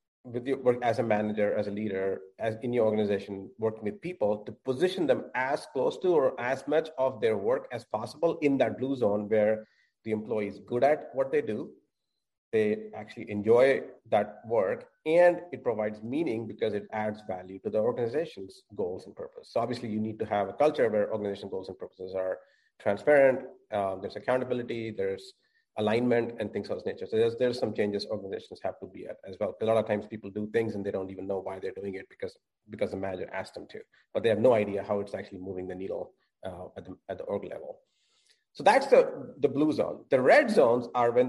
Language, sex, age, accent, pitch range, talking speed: English, male, 30-49, Indian, 105-175 Hz, 220 wpm